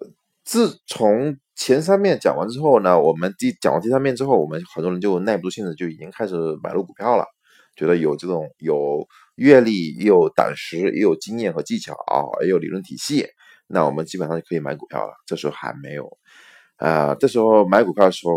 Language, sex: Chinese, male